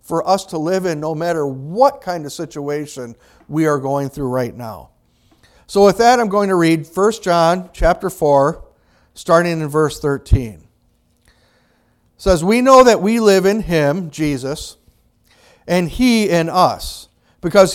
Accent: American